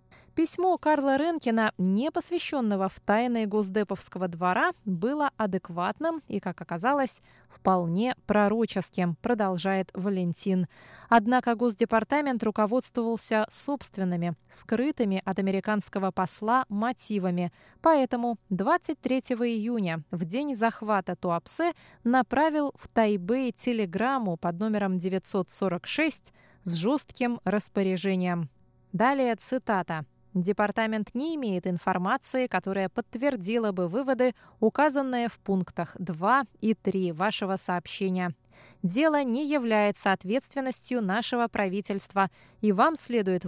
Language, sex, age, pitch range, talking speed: Russian, female, 20-39, 190-250 Hz, 100 wpm